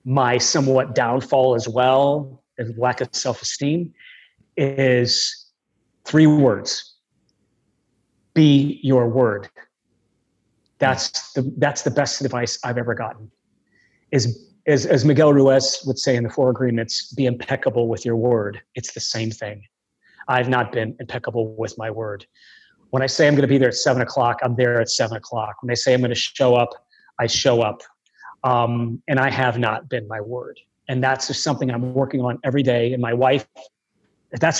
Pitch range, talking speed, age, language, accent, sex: 120-140 Hz, 170 wpm, 30-49, English, American, male